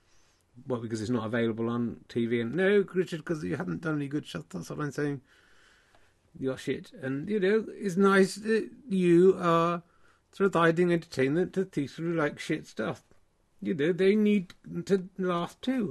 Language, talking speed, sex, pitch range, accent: English, 180 wpm, male, 120-190 Hz, British